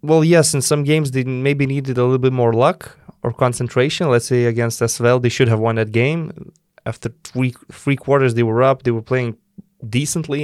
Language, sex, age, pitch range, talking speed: English, male, 20-39, 115-150 Hz, 205 wpm